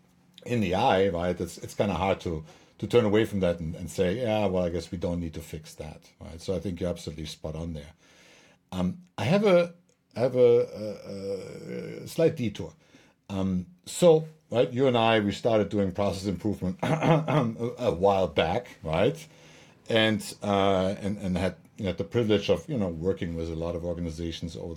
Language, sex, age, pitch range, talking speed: English, male, 60-79, 90-125 Hz, 195 wpm